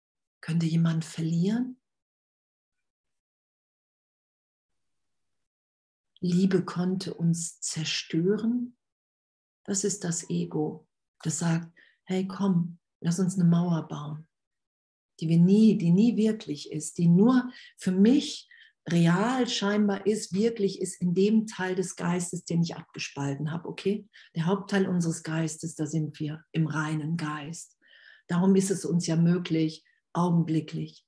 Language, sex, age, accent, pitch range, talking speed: German, female, 50-69, German, 155-190 Hz, 120 wpm